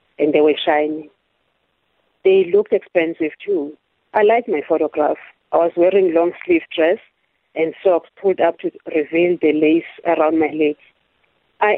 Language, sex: English, female